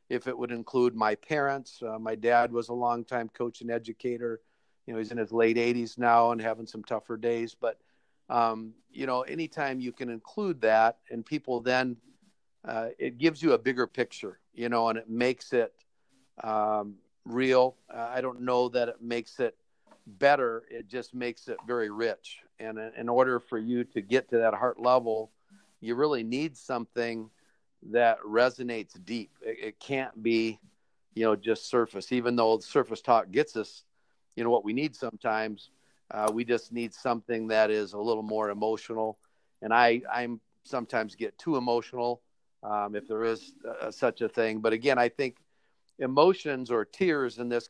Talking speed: 180 wpm